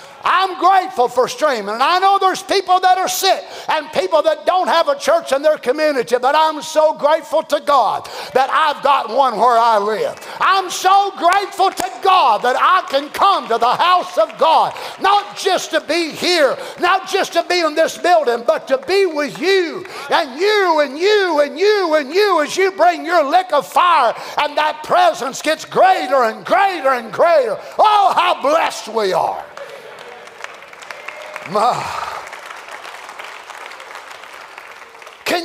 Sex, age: male, 50-69